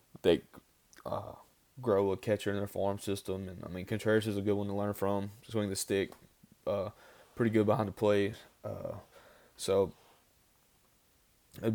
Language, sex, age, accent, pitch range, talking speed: English, male, 20-39, American, 95-110 Hz, 165 wpm